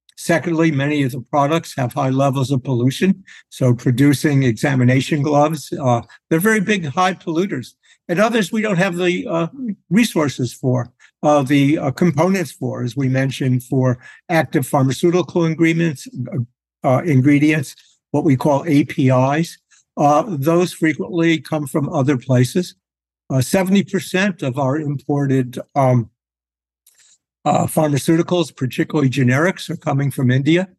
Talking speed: 135 wpm